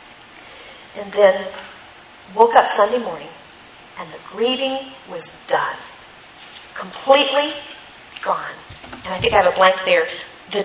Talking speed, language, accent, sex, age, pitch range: 125 wpm, English, American, female, 40-59, 180-230 Hz